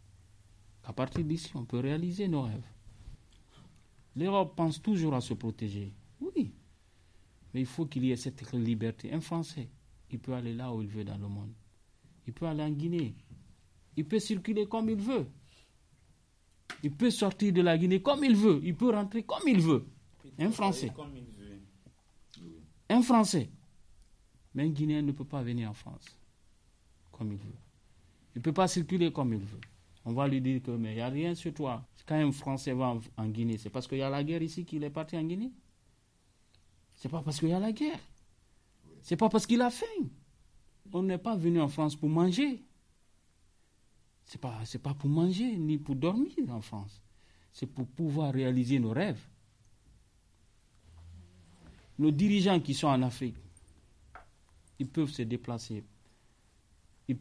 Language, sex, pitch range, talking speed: French, male, 105-160 Hz, 175 wpm